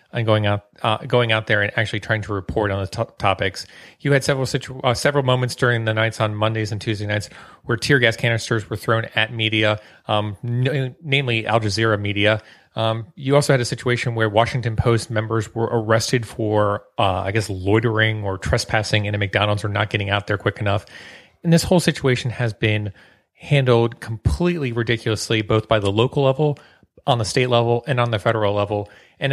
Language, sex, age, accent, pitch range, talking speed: English, male, 30-49, American, 105-125 Hz, 200 wpm